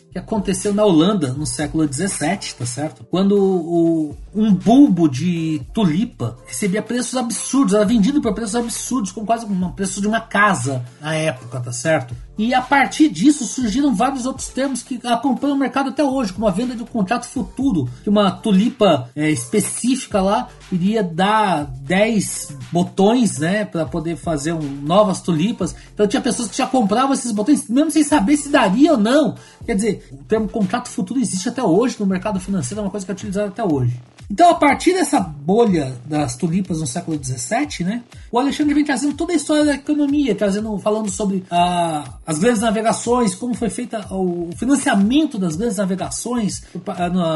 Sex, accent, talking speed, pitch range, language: male, Brazilian, 180 wpm, 170-240 Hz, Portuguese